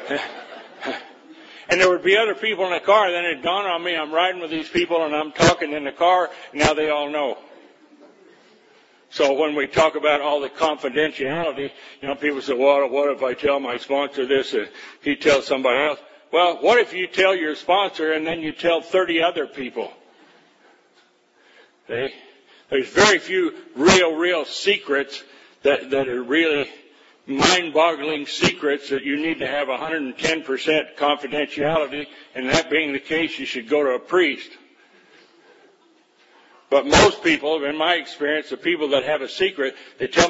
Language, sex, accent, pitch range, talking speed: English, male, American, 145-175 Hz, 170 wpm